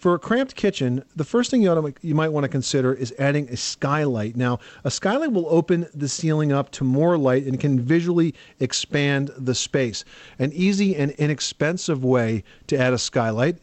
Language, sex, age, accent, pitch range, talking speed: English, male, 40-59, American, 130-170 Hz, 200 wpm